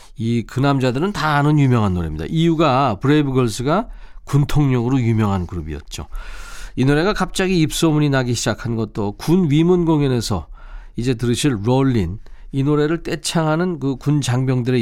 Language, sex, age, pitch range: Korean, male, 40-59, 115-165 Hz